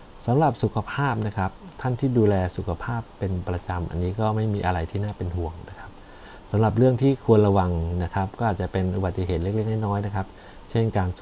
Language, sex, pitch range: Thai, male, 90-110 Hz